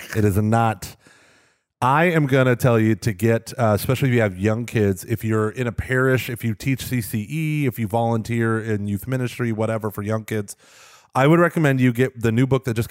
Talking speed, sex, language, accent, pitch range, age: 220 wpm, male, English, American, 110-135 Hz, 30-49